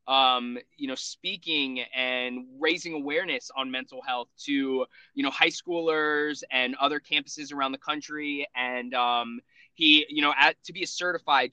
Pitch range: 130-210 Hz